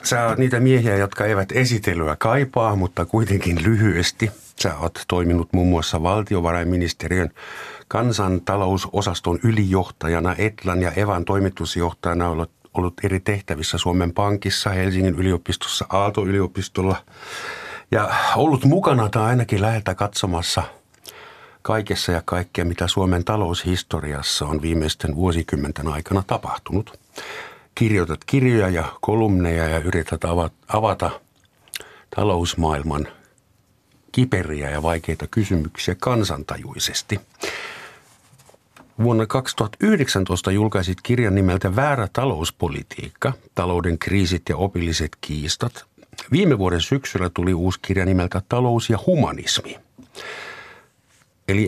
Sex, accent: male, native